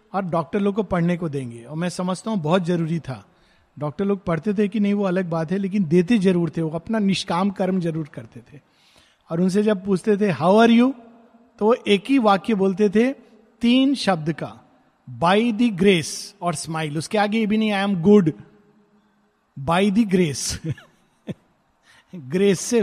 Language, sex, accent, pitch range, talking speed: Hindi, male, native, 175-235 Hz, 175 wpm